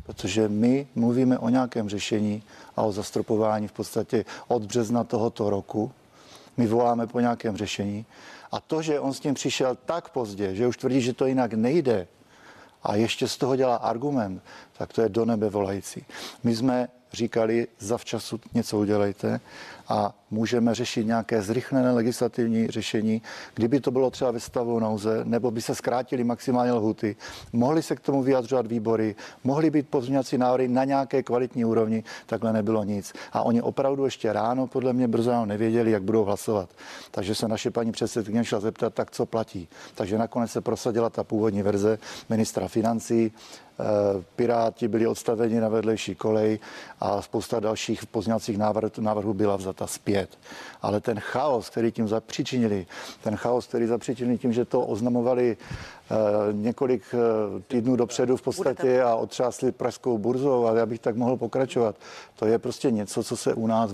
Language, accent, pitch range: Czech, native, 110-125 Hz